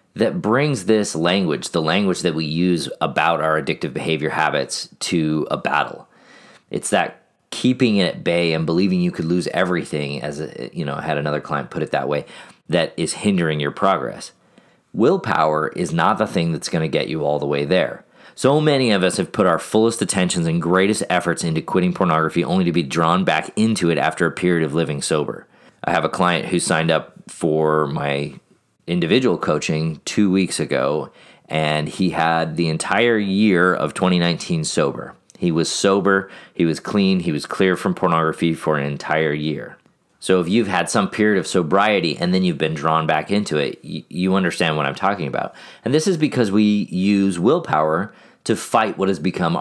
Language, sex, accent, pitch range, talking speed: English, male, American, 80-100 Hz, 190 wpm